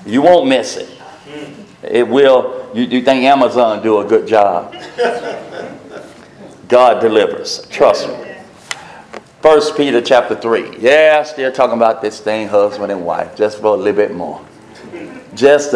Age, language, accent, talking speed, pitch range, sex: 50-69, English, American, 150 wpm, 105-140 Hz, male